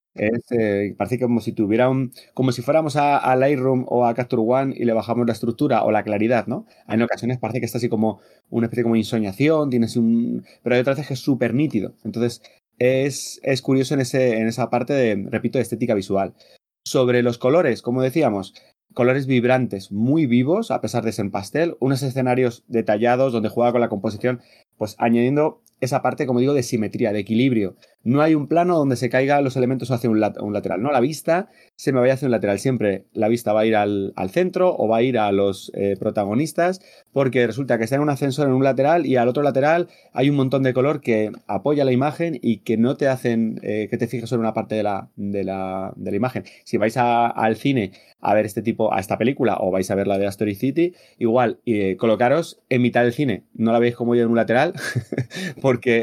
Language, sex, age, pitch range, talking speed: Spanish, male, 30-49, 110-130 Hz, 225 wpm